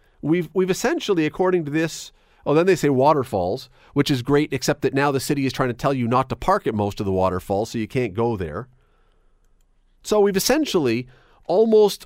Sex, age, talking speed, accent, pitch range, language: male, 40-59, 205 wpm, American, 120-185 Hz, English